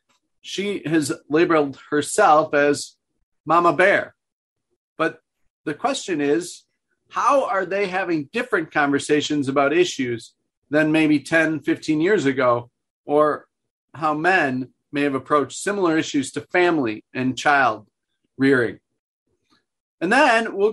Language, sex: English, male